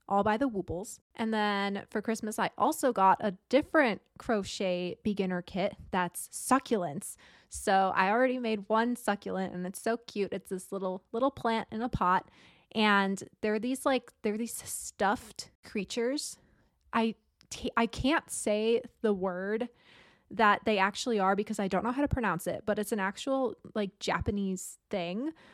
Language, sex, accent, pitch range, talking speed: English, female, American, 190-230 Hz, 165 wpm